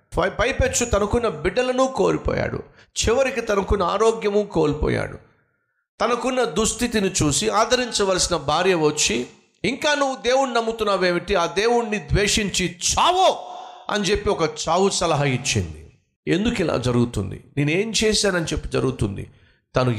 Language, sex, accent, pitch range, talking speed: Telugu, male, native, 130-215 Hz, 110 wpm